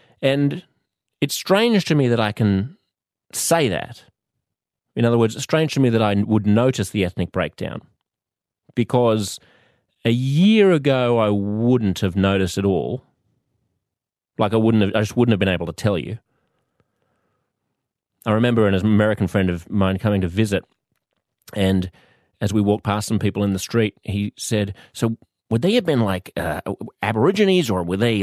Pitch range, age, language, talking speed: 95-120 Hz, 30-49, English, 170 wpm